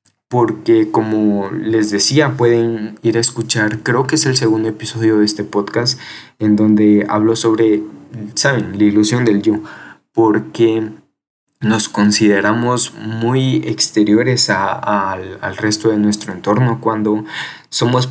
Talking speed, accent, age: 130 wpm, Mexican, 20-39